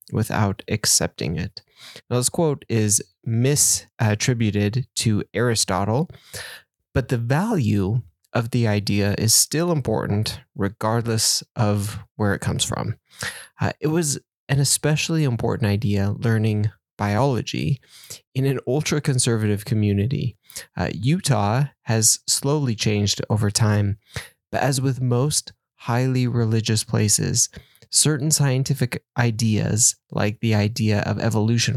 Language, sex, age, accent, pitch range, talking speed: English, male, 20-39, American, 105-135 Hz, 115 wpm